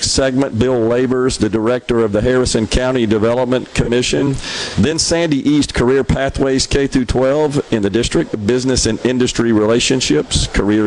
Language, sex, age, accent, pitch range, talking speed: English, male, 50-69, American, 110-135 Hz, 150 wpm